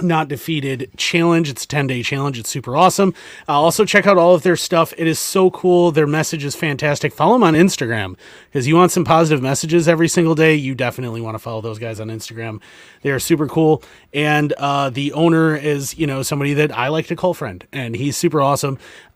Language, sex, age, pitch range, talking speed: English, male, 30-49, 135-175 Hz, 220 wpm